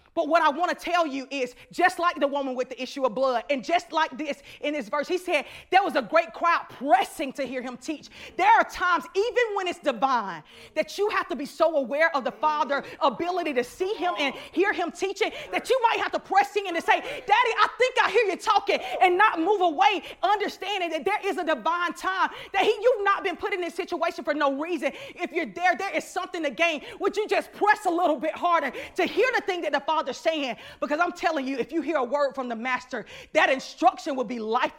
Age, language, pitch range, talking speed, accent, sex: 30-49, English, 290-375 Hz, 240 wpm, American, female